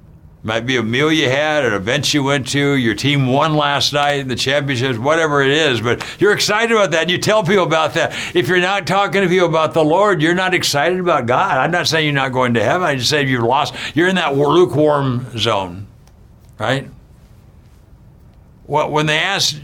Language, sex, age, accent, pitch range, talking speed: English, male, 60-79, American, 125-160 Hz, 215 wpm